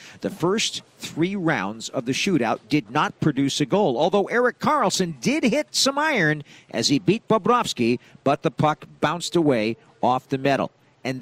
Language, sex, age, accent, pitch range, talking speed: English, male, 50-69, American, 170-275 Hz, 170 wpm